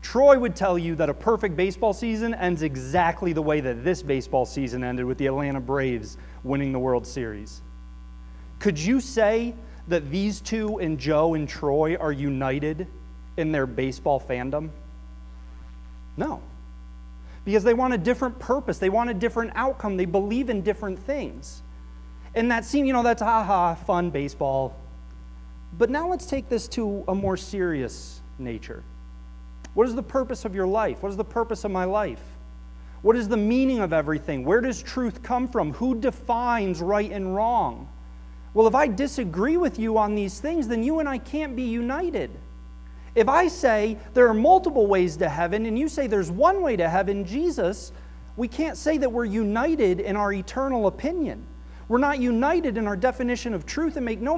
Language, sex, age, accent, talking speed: English, male, 30-49, American, 180 wpm